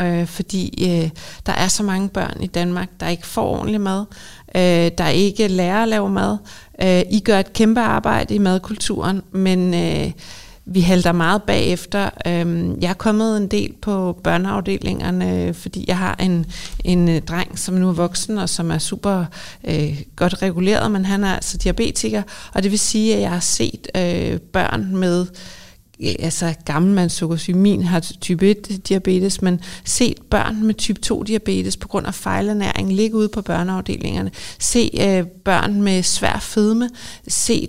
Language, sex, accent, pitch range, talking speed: Danish, female, native, 180-210 Hz, 165 wpm